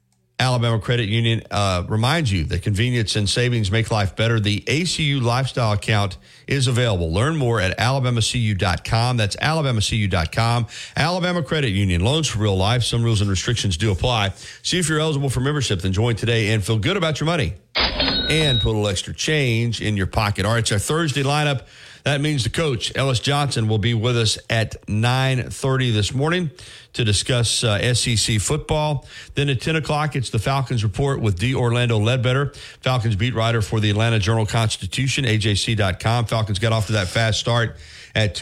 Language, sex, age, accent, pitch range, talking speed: English, male, 50-69, American, 105-130 Hz, 180 wpm